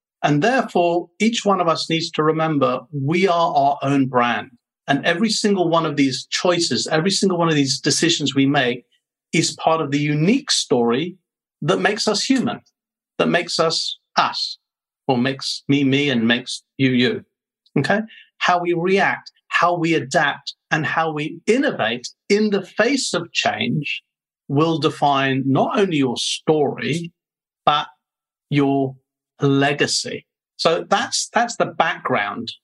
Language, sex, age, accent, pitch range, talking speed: English, male, 50-69, British, 130-180 Hz, 150 wpm